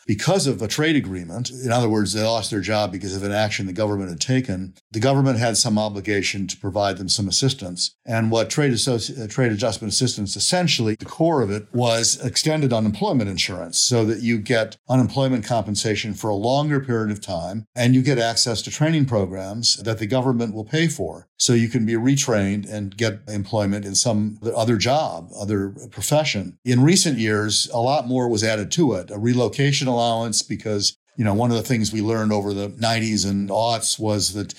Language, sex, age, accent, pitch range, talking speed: English, male, 50-69, American, 105-130 Hz, 200 wpm